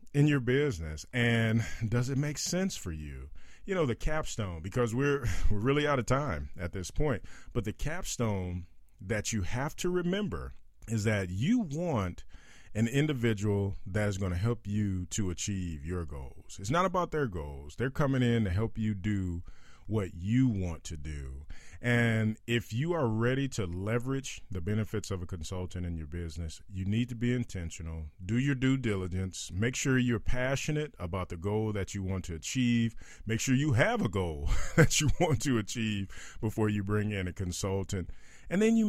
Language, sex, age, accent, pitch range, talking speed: English, male, 40-59, American, 90-125 Hz, 185 wpm